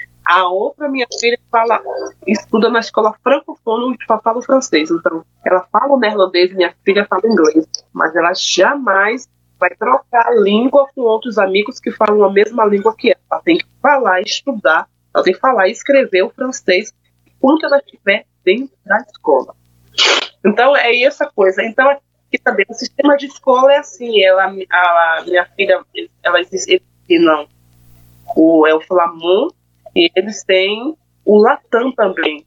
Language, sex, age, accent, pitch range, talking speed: Portuguese, female, 20-39, Brazilian, 175-235 Hz, 170 wpm